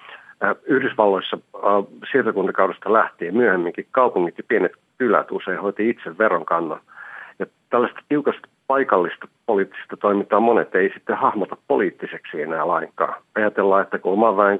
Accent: native